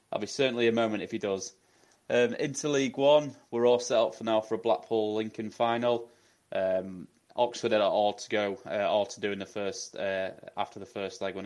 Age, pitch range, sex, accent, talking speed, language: 20-39, 95-120 Hz, male, British, 225 wpm, English